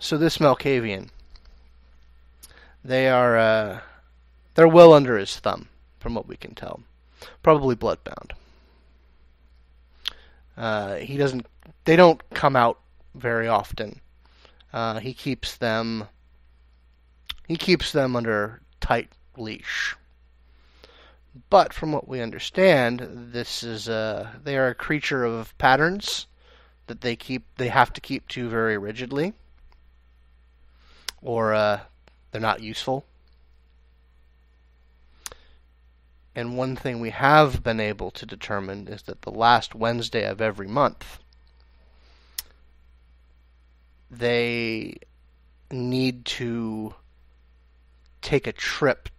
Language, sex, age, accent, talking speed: English, male, 30-49, American, 100 wpm